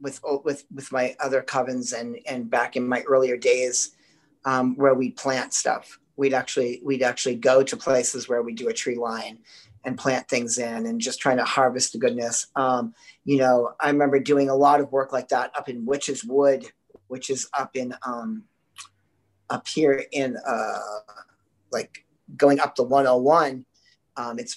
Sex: male